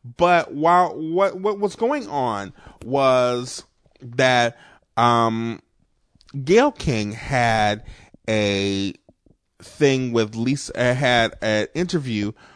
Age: 30-49